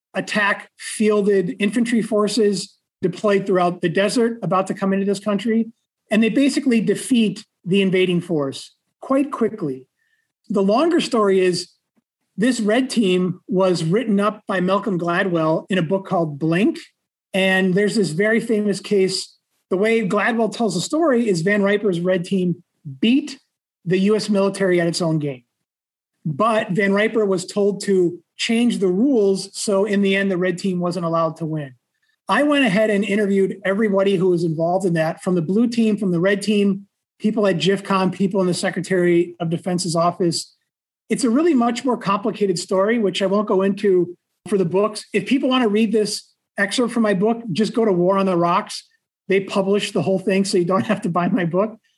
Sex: male